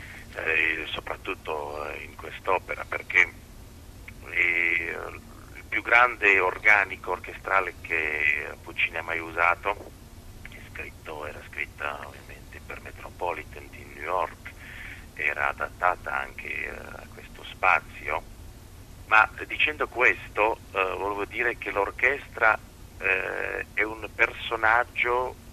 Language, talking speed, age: Italian, 100 wpm, 40-59